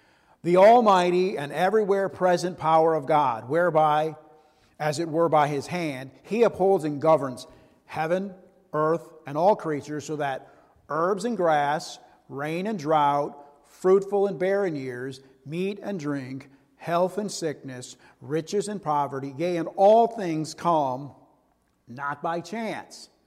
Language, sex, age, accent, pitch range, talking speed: English, male, 50-69, American, 130-165 Hz, 135 wpm